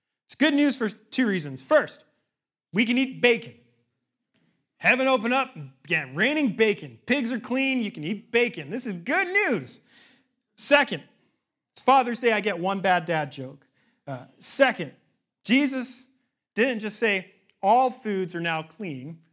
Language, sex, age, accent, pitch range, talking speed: English, male, 40-59, American, 185-255 Hz, 150 wpm